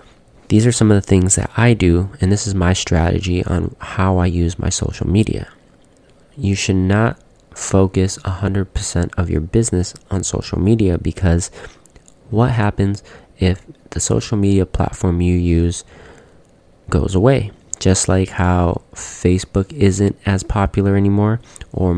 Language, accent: English, American